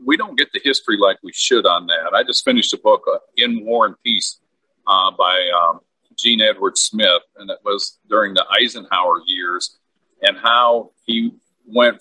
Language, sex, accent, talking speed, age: English, male, American, 185 wpm, 50-69